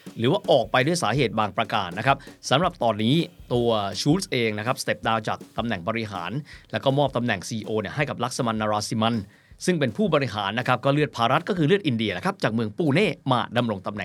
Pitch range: 115-160 Hz